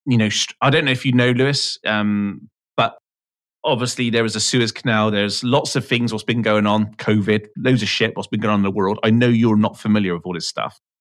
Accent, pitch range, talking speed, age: British, 100-125 Hz, 245 wpm, 30-49